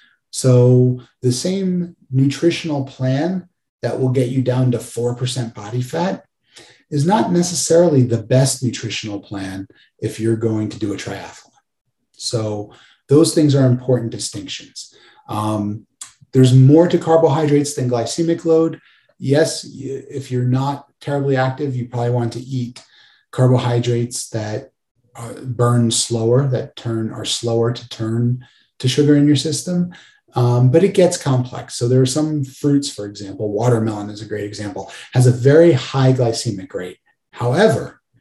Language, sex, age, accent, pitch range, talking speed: English, male, 30-49, American, 115-145 Hz, 145 wpm